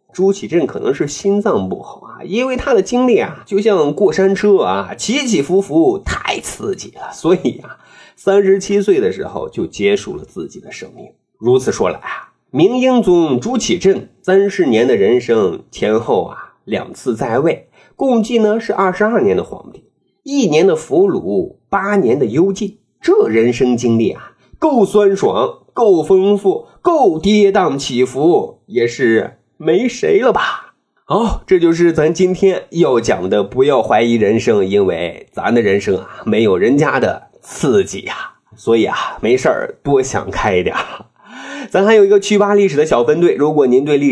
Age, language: 30-49, Chinese